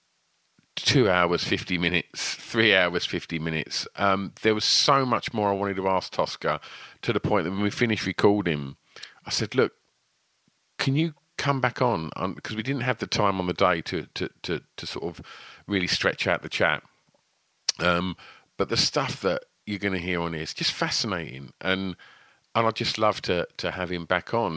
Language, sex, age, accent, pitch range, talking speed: English, male, 40-59, British, 85-115 Hz, 205 wpm